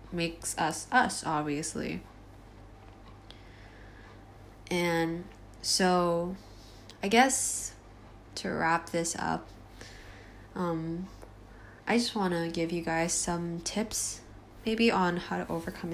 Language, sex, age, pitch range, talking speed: English, female, 20-39, 110-180 Hz, 100 wpm